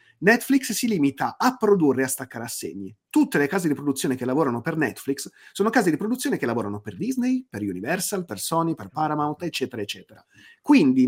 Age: 30-49